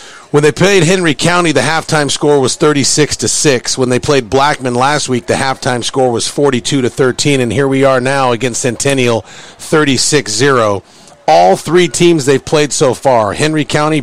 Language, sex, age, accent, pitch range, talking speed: English, male, 40-59, American, 130-155 Hz, 180 wpm